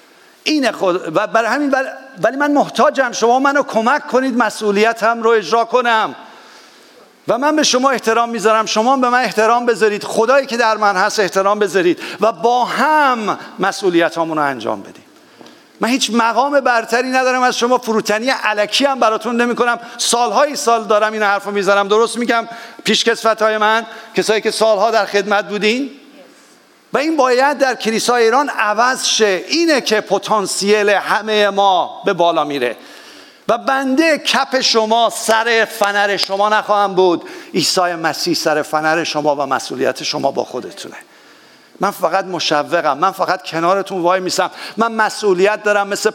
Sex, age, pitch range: male, 50-69, 200-250 Hz